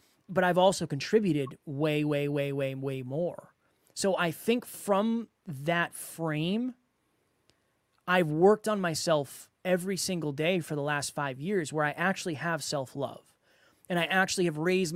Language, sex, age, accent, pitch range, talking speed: English, male, 20-39, American, 145-185 Hz, 155 wpm